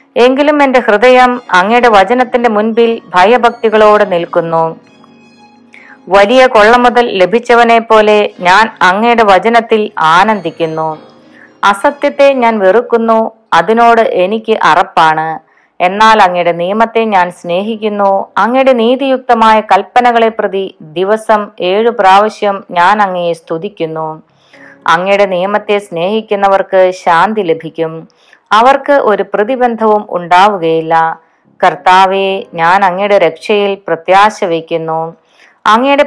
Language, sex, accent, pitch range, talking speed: Malayalam, female, native, 175-230 Hz, 90 wpm